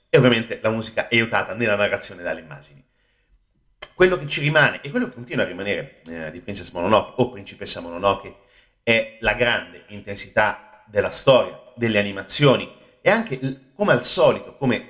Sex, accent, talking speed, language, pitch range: male, native, 160 wpm, Italian, 100-125 Hz